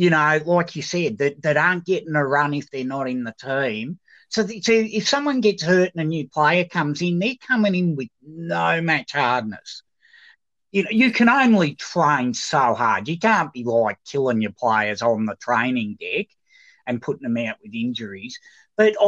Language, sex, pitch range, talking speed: English, male, 135-210 Hz, 200 wpm